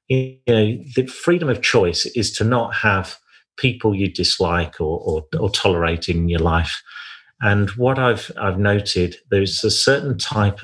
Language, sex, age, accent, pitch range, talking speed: English, male, 40-59, British, 95-115 Hz, 165 wpm